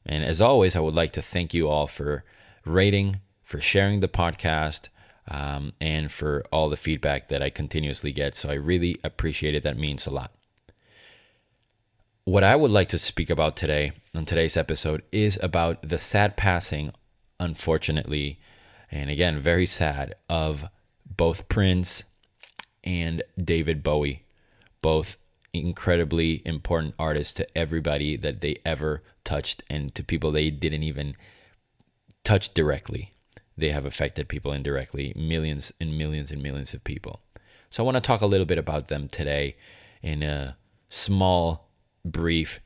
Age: 30-49